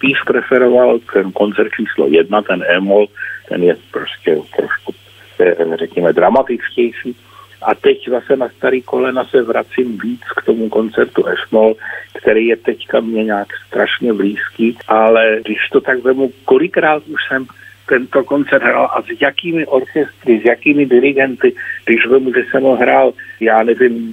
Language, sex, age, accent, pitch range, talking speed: Czech, male, 50-69, native, 115-165 Hz, 145 wpm